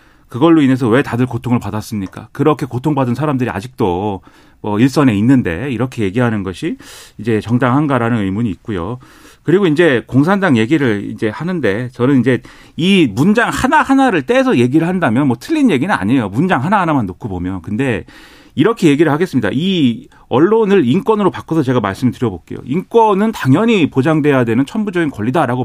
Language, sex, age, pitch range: Korean, male, 40-59, 120-195 Hz